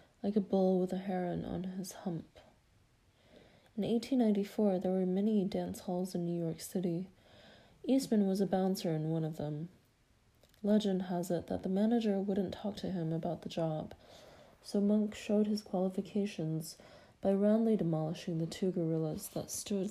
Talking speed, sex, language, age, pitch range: 165 wpm, female, English, 30-49, 175-210 Hz